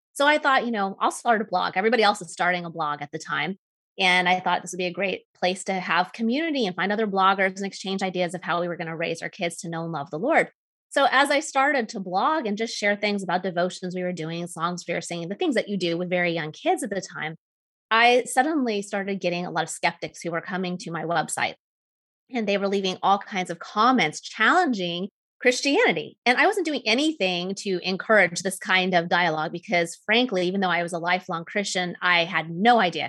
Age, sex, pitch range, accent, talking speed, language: 30-49, female, 175-220 Hz, American, 240 wpm, English